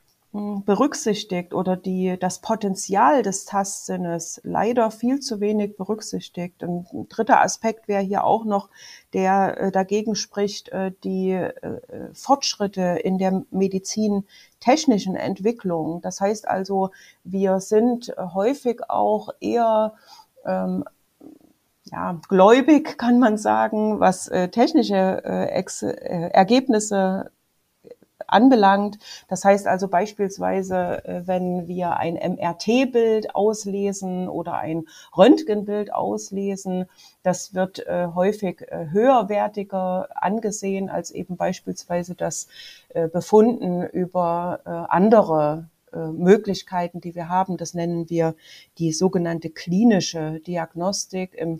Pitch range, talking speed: 175-210 Hz, 100 wpm